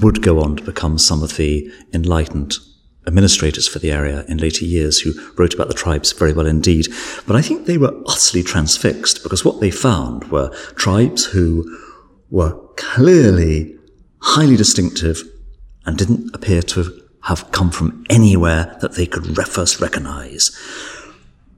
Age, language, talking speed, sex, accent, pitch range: 40-59, English, 155 wpm, male, British, 75-95 Hz